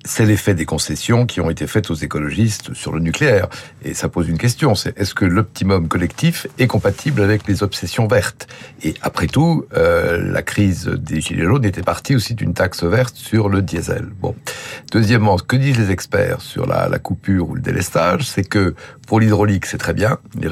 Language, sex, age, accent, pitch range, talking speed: French, male, 60-79, French, 95-130 Hz, 200 wpm